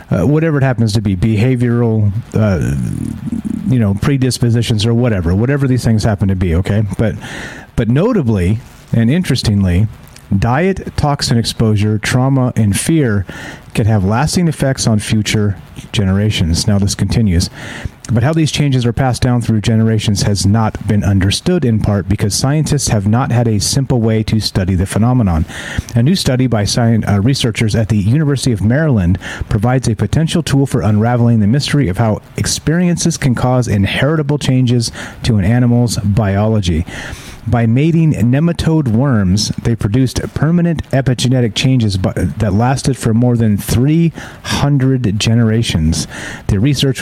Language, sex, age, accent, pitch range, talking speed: English, male, 40-59, American, 105-130 Hz, 145 wpm